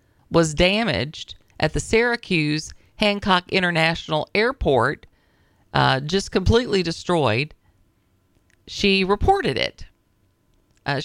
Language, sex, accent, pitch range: English, female, American, 140-185 Hz